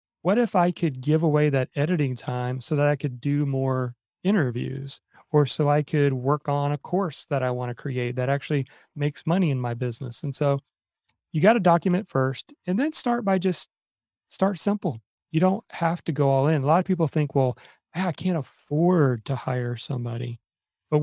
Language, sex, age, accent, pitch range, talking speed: English, male, 30-49, American, 135-170 Hz, 200 wpm